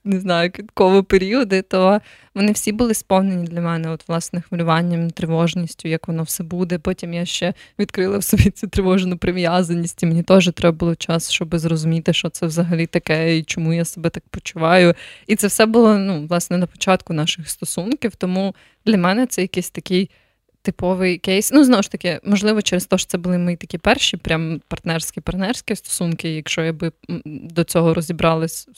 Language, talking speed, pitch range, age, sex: Ukrainian, 180 wpm, 170-200 Hz, 20-39, female